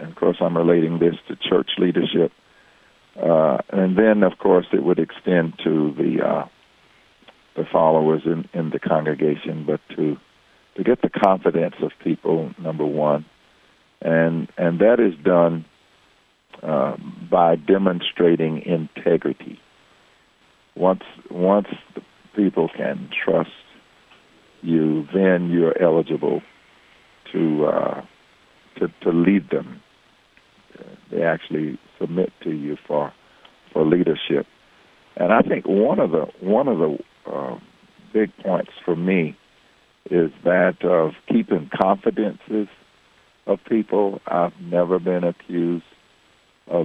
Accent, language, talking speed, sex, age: American, English, 120 wpm, male, 60-79